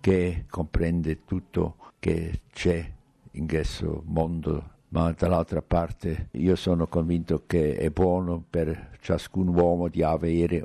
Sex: male